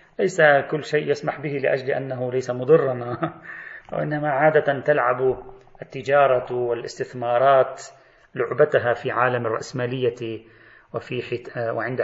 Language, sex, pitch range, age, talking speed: Arabic, male, 115-145 Hz, 30-49, 105 wpm